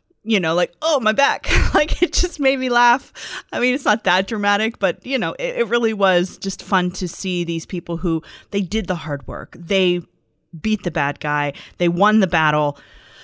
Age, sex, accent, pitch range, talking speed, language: 30-49, female, American, 165-210 Hz, 210 wpm, English